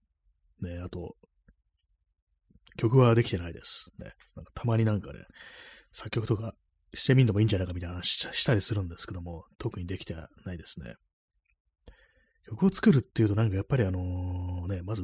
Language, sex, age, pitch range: Japanese, male, 30-49, 85-110 Hz